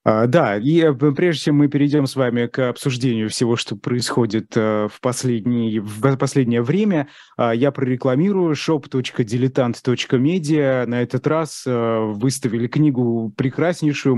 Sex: male